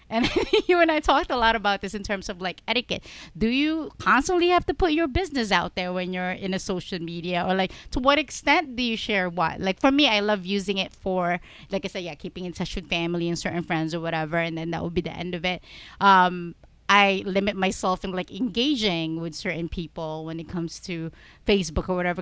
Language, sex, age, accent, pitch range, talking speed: English, female, 30-49, Filipino, 180-235 Hz, 235 wpm